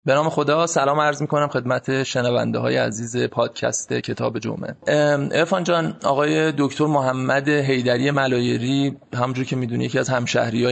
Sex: male